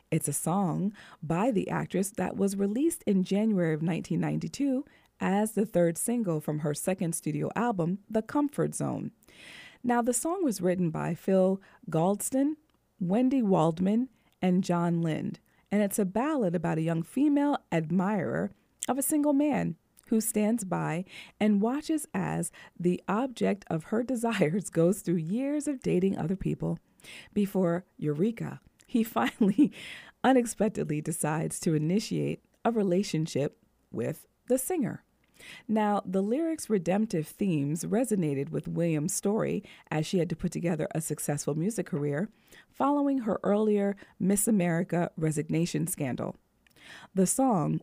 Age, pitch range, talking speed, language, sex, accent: 40-59, 170-230 Hz, 140 wpm, English, female, American